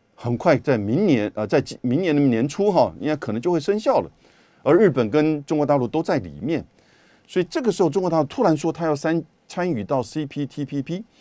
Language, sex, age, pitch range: Chinese, male, 50-69, 110-170 Hz